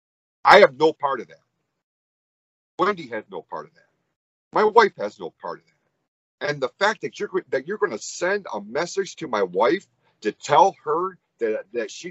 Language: English